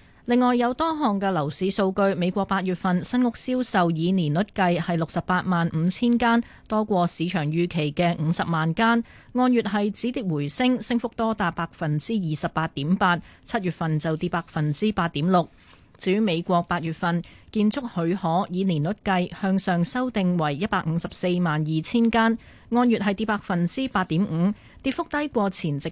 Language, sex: Chinese, female